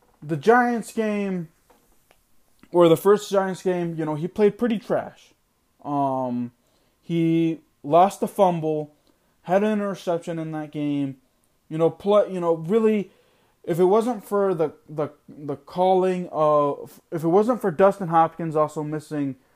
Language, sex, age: English, male, 20-39